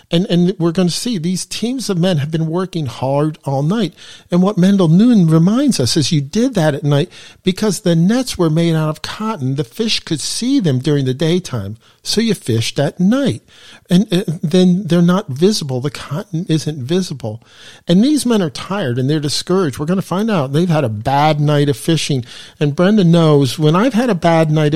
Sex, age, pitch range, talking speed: male, 50-69, 135-185 Hz, 215 wpm